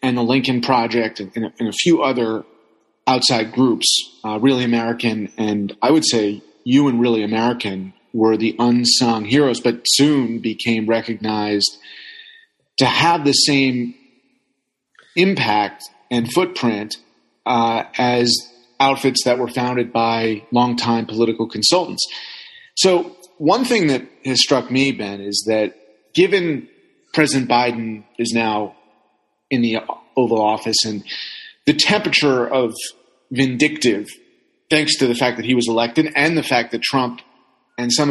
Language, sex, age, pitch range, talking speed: English, male, 30-49, 115-140 Hz, 140 wpm